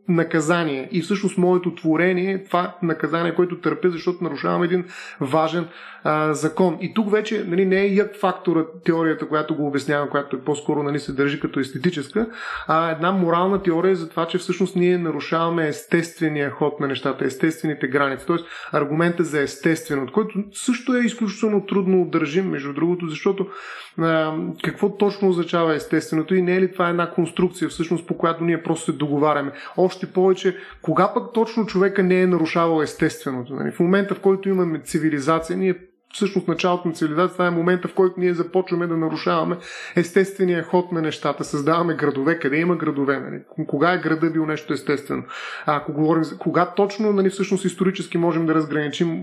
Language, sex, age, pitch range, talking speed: Bulgarian, male, 30-49, 155-185 Hz, 175 wpm